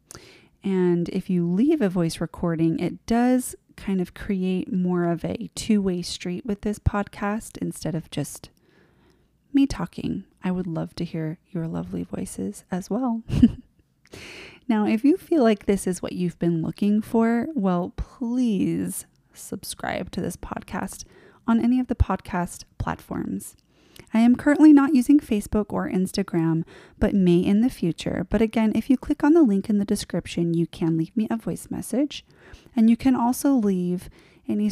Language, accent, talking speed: English, American, 165 wpm